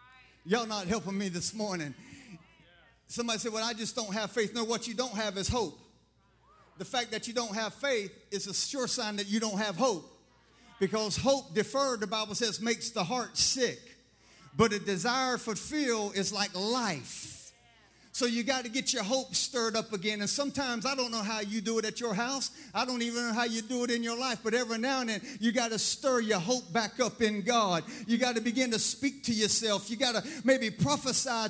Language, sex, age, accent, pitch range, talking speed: English, male, 50-69, American, 220-255 Hz, 220 wpm